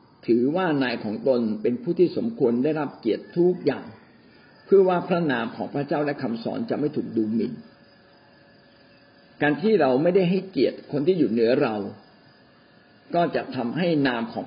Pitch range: 135-180 Hz